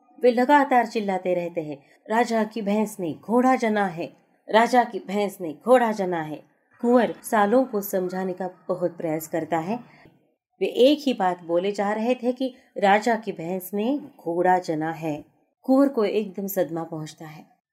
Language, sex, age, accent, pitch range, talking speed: Hindi, female, 30-49, native, 180-245 Hz, 170 wpm